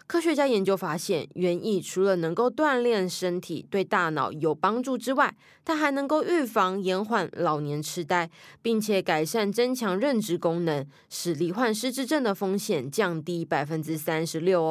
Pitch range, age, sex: 170-230 Hz, 20-39, female